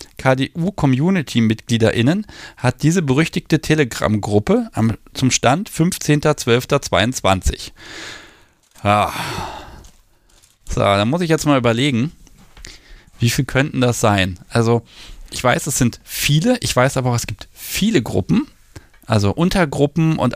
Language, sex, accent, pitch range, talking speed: German, male, German, 105-135 Hz, 110 wpm